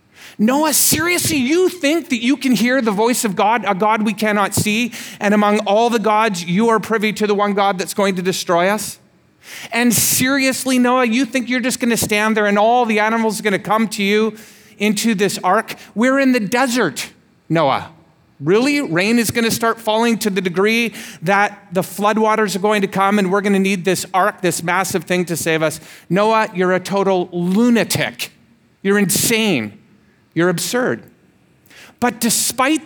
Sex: male